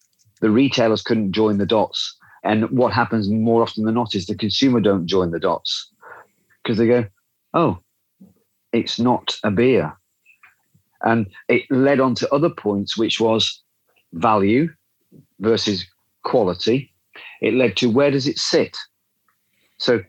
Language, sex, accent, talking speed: English, male, British, 145 wpm